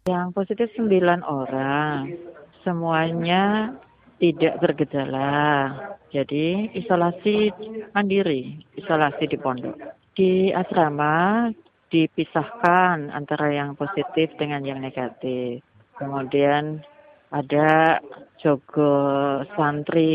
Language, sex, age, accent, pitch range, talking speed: Indonesian, female, 40-59, native, 145-200 Hz, 75 wpm